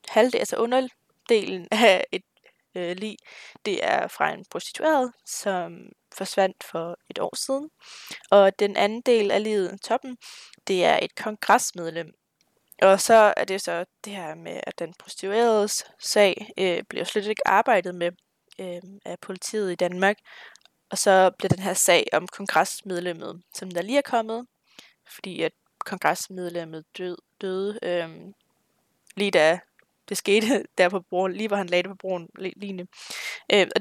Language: Danish